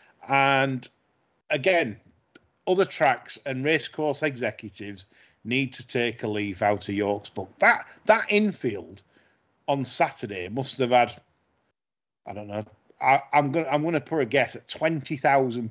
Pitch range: 115-160 Hz